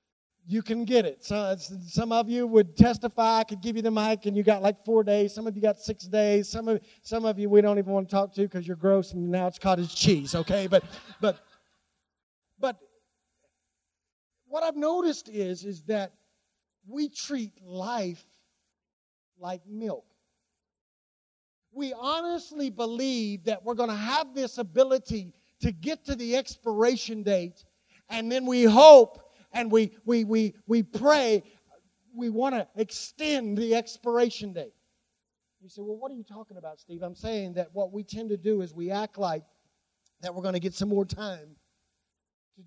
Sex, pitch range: male, 195-240 Hz